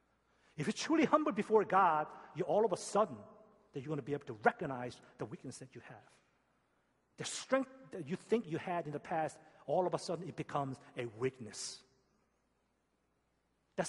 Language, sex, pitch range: Korean, male, 120-195 Hz